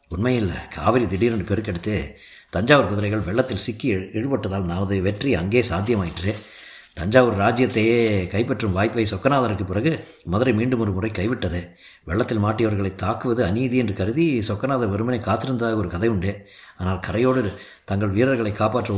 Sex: male